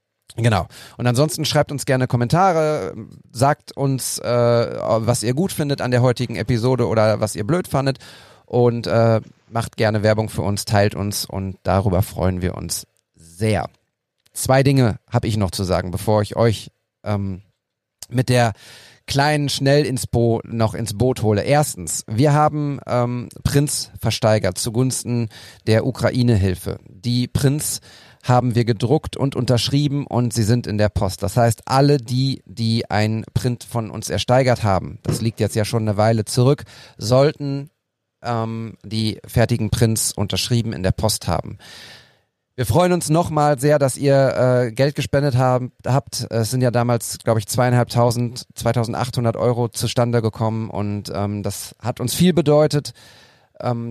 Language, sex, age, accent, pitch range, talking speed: German, male, 40-59, German, 110-130 Hz, 155 wpm